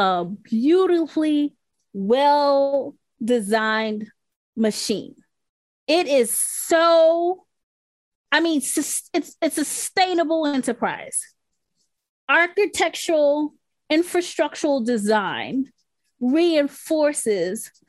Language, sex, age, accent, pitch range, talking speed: English, female, 20-39, American, 245-320 Hz, 60 wpm